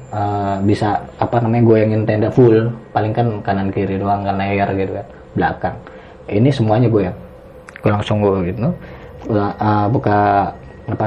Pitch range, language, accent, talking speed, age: 105-120 Hz, Indonesian, native, 155 wpm, 20-39